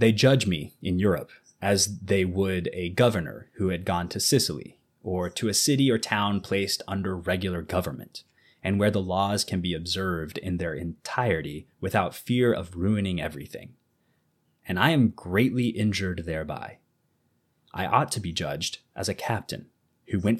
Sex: male